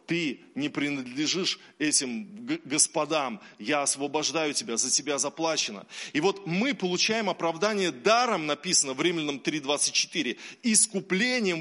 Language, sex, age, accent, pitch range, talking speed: Russian, male, 20-39, native, 165-210 Hz, 115 wpm